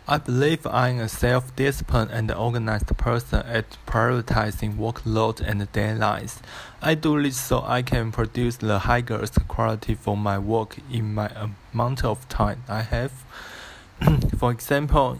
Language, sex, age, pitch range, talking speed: English, male, 20-39, 110-125 Hz, 145 wpm